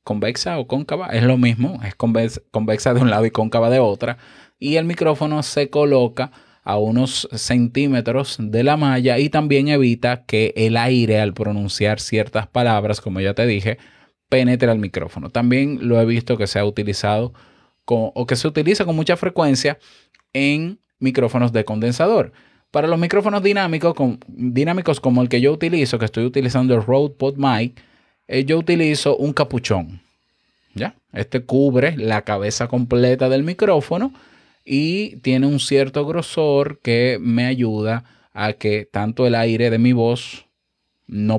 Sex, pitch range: male, 110-140 Hz